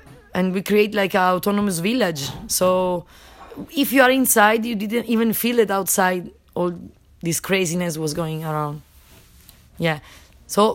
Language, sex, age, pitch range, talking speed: English, female, 20-39, 170-205 Hz, 145 wpm